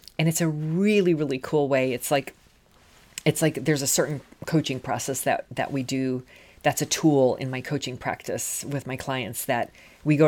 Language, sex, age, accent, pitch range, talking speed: English, female, 40-59, American, 130-160 Hz, 195 wpm